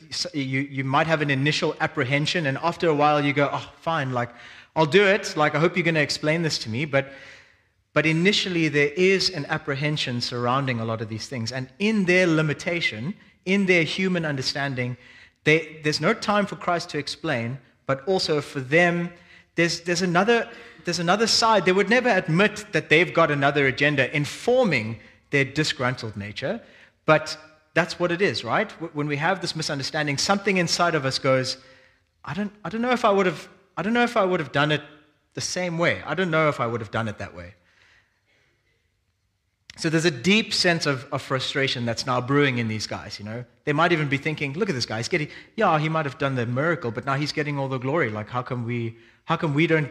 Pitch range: 130-175 Hz